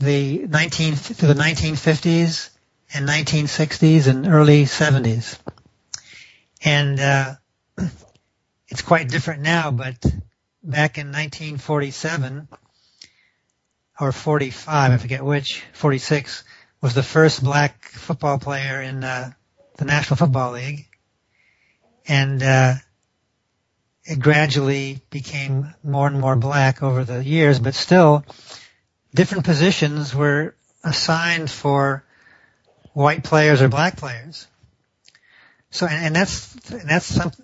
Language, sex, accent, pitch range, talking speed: English, male, American, 135-155 Hz, 110 wpm